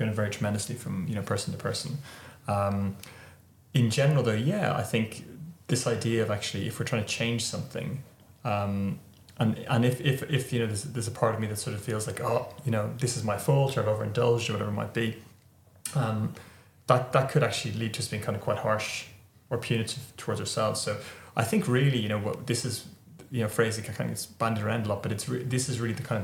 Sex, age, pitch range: male, 20-39, 105-125 Hz